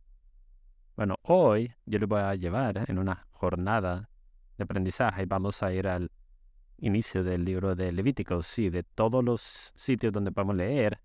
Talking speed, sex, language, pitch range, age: 165 wpm, male, English, 85-100 Hz, 30-49